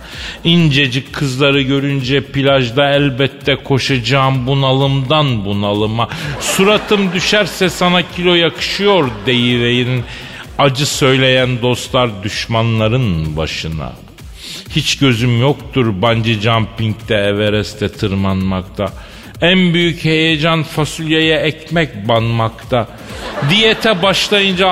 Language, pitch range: Turkish, 120-165 Hz